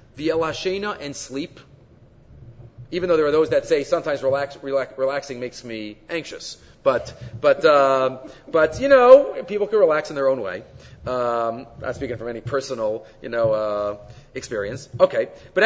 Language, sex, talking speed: English, male, 165 wpm